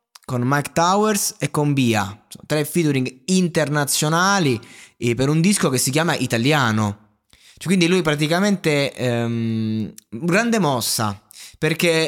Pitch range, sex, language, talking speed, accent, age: 125-185 Hz, male, Italian, 120 wpm, native, 20-39